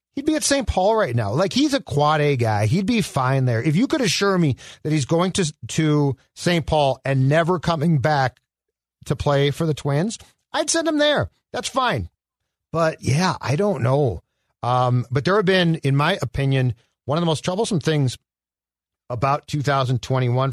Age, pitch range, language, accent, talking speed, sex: 50-69, 120-165 Hz, English, American, 190 wpm, male